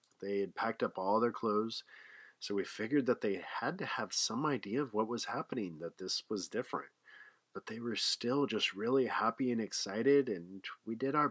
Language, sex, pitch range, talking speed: English, male, 95-110 Hz, 200 wpm